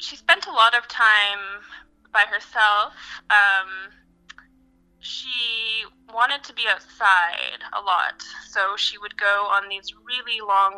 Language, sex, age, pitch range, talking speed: English, female, 20-39, 180-230 Hz, 135 wpm